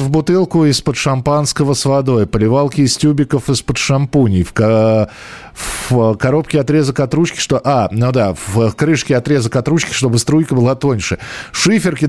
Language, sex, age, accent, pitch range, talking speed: Russian, male, 50-69, native, 115-175 Hz, 105 wpm